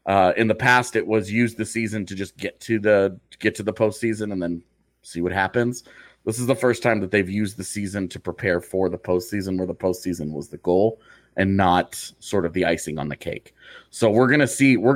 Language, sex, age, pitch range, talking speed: English, male, 30-49, 95-115 Hz, 240 wpm